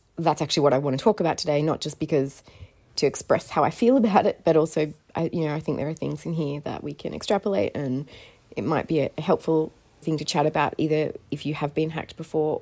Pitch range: 135-155 Hz